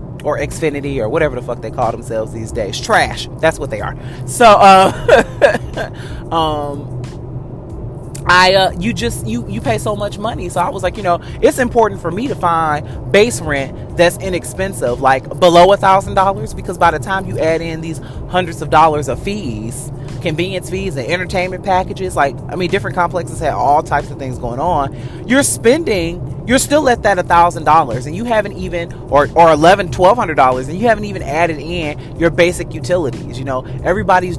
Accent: American